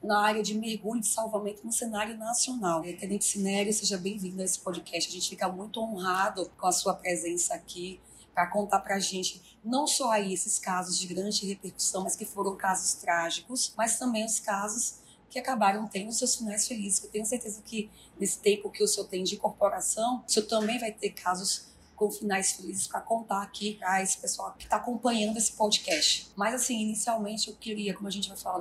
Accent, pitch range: Brazilian, 190-225 Hz